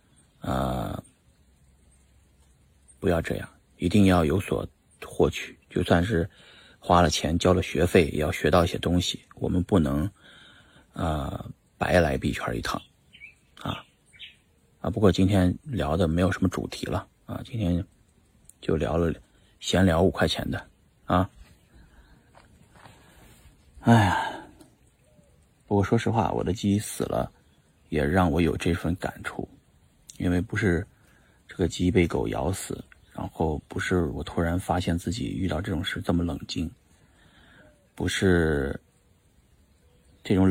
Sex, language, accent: male, Chinese, native